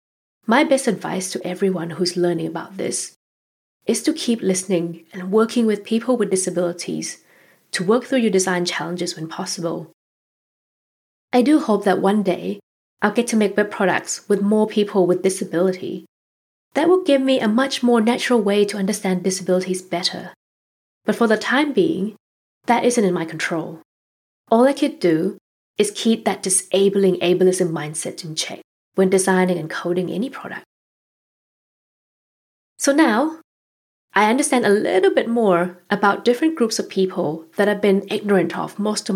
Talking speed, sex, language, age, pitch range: 160 wpm, female, English, 20-39, 180-230 Hz